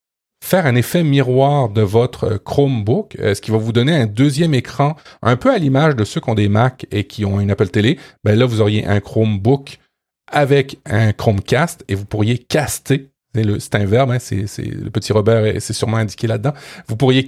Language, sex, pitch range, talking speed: French, male, 110-135 Hz, 205 wpm